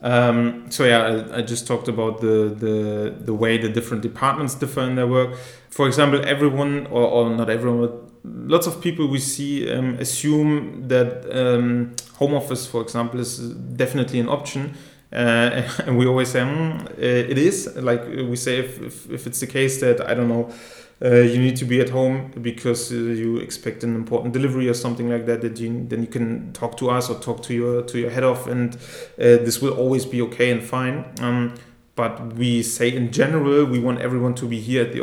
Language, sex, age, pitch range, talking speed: English, male, 30-49, 120-130 Hz, 205 wpm